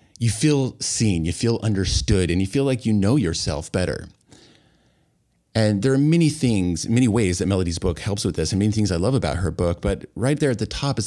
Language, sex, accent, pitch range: English, male, American, 85-110 Hz